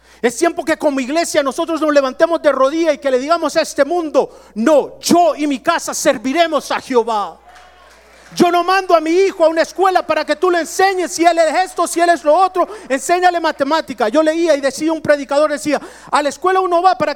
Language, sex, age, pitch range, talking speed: English, male, 50-69, 255-335 Hz, 220 wpm